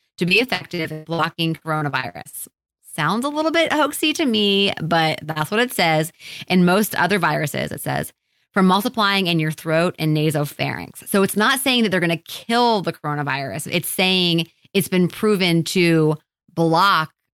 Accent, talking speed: American, 170 wpm